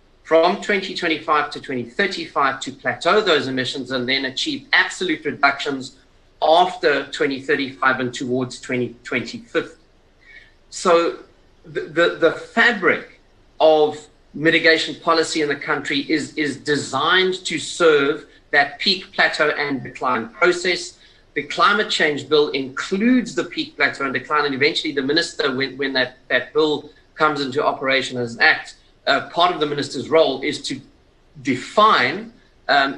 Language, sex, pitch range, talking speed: English, male, 130-175 Hz, 135 wpm